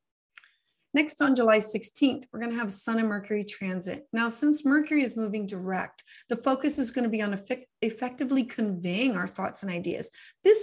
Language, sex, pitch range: English, female, 210-265 Hz